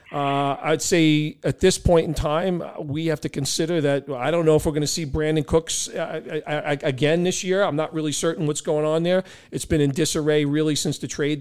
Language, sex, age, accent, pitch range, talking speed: English, male, 40-59, American, 145-175 Hz, 225 wpm